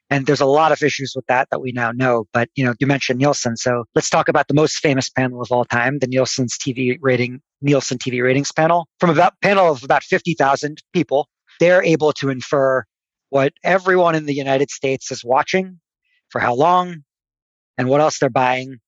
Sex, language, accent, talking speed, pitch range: male, English, American, 205 wpm, 125-150 Hz